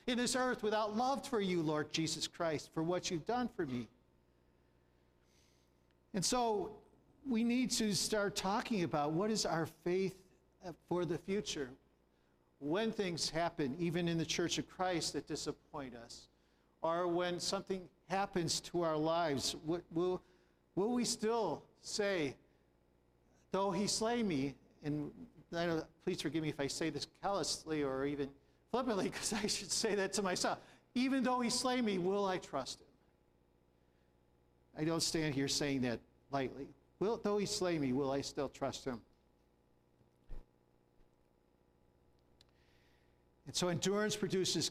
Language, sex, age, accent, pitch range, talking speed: English, male, 50-69, American, 115-190 Hz, 150 wpm